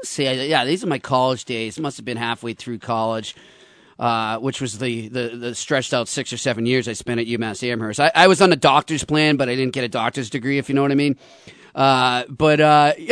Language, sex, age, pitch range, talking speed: English, male, 40-59, 130-185 Hz, 245 wpm